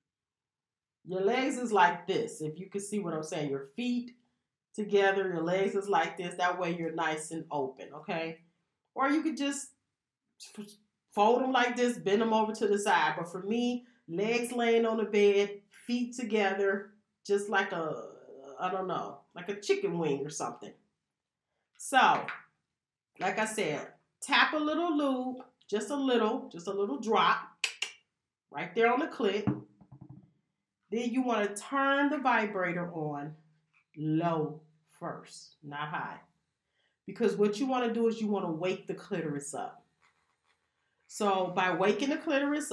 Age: 30-49